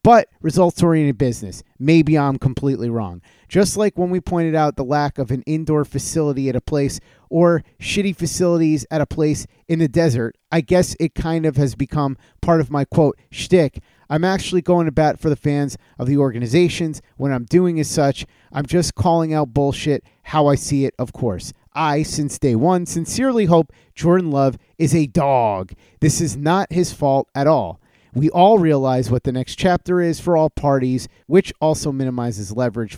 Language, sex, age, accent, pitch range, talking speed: English, male, 30-49, American, 135-170 Hz, 185 wpm